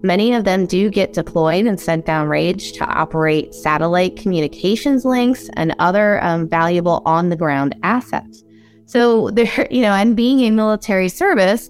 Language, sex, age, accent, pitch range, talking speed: English, female, 20-39, American, 155-205 Hz, 155 wpm